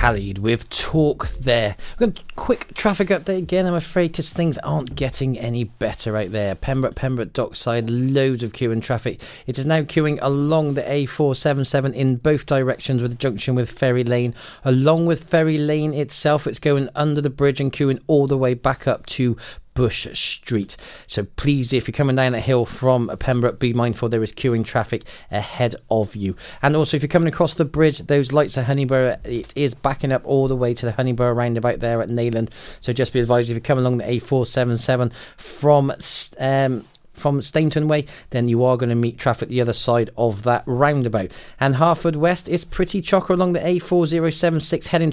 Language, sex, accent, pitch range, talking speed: English, male, British, 120-150 Hz, 190 wpm